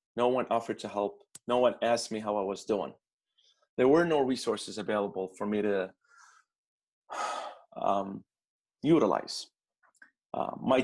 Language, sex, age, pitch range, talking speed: English, male, 30-49, 110-135 Hz, 140 wpm